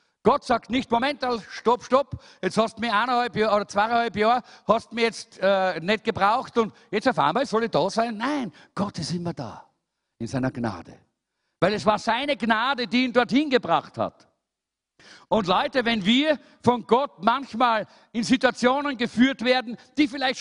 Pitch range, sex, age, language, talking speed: 145-245 Hz, male, 50-69, German, 180 wpm